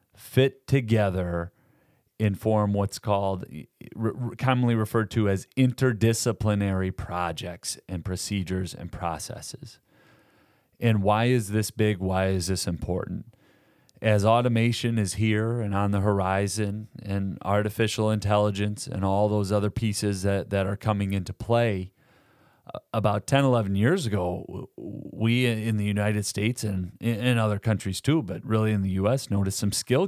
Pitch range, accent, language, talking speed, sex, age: 100-115 Hz, American, English, 140 wpm, male, 30-49